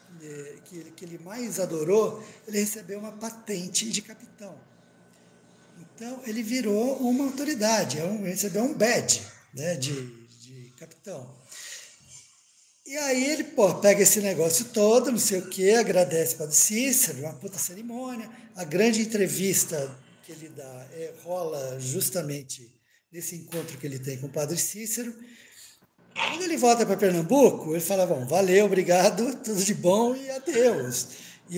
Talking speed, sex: 145 wpm, male